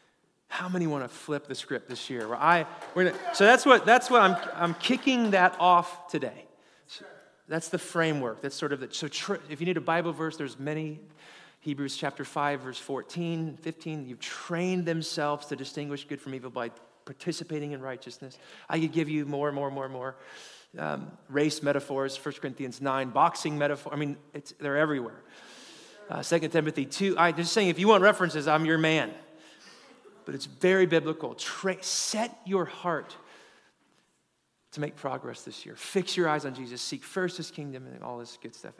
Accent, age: American, 30-49